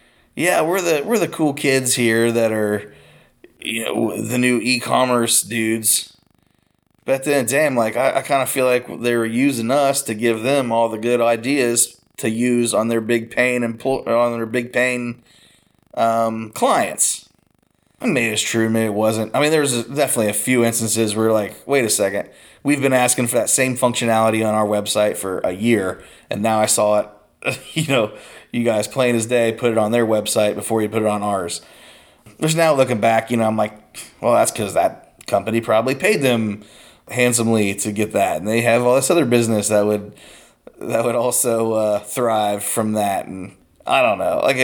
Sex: male